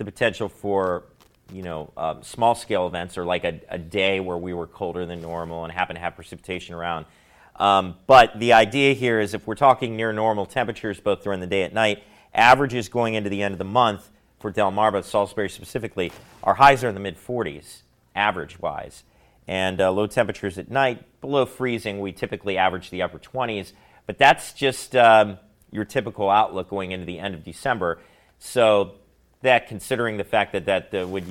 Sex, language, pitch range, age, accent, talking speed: male, English, 90-115 Hz, 40-59, American, 190 wpm